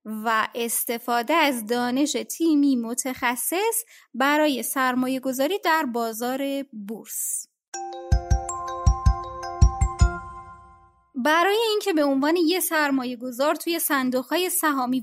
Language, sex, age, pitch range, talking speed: Persian, female, 20-39, 240-315 Hz, 90 wpm